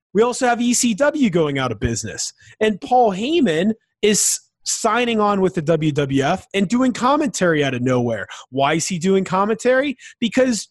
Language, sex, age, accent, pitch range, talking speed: English, male, 30-49, American, 155-215 Hz, 160 wpm